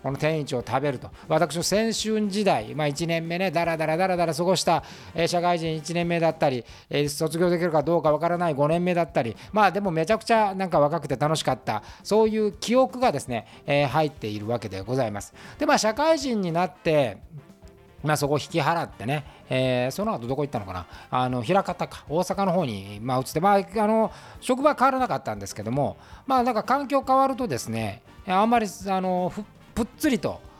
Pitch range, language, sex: 130-195 Hz, Japanese, male